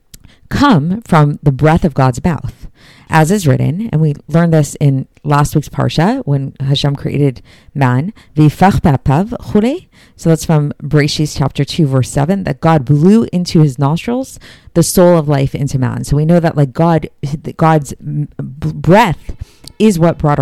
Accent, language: American, English